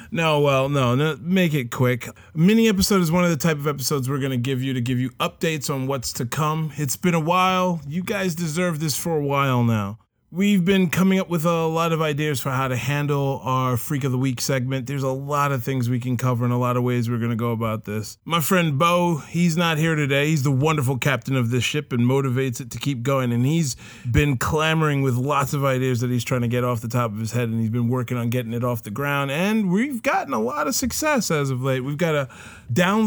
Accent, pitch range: American, 125-170 Hz